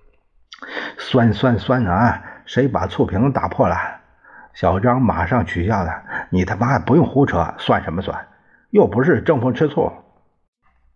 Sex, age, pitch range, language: male, 50-69, 85-120 Hz, Chinese